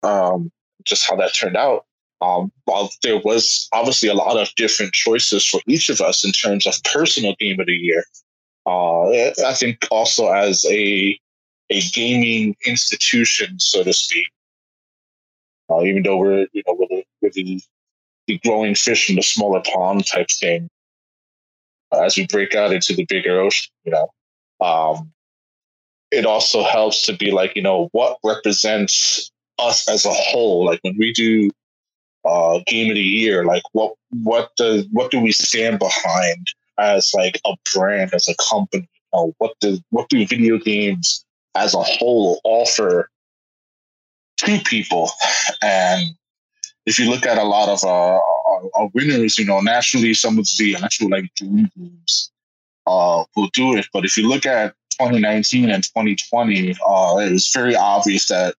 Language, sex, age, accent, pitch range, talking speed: English, male, 20-39, American, 95-120 Hz, 165 wpm